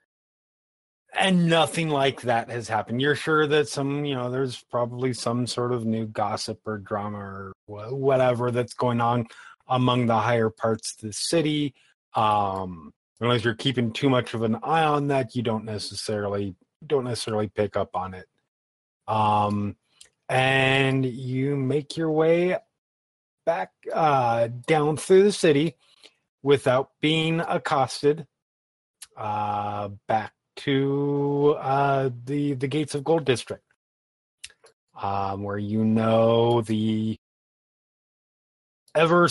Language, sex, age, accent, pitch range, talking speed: English, male, 30-49, American, 110-150 Hz, 130 wpm